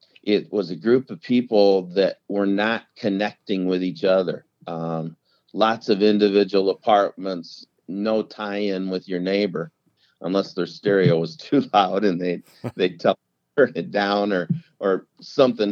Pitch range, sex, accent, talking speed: 95-115 Hz, male, American, 145 wpm